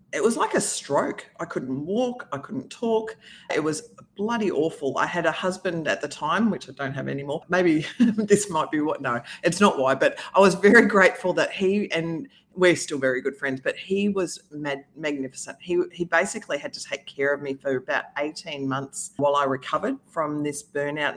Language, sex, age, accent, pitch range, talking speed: English, female, 30-49, Australian, 145-195 Hz, 205 wpm